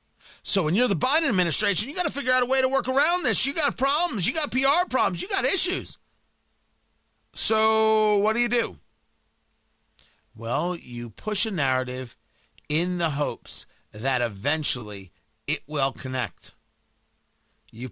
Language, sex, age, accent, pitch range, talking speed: English, male, 40-59, American, 135-220 Hz, 155 wpm